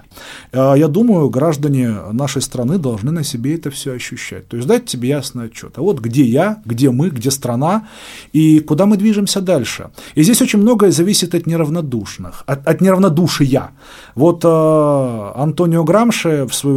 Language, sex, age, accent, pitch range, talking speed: Russian, male, 30-49, native, 135-185 Hz, 160 wpm